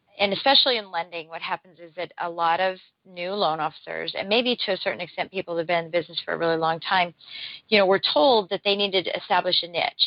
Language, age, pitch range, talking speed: English, 40-59, 165-200 Hz, 245 wpm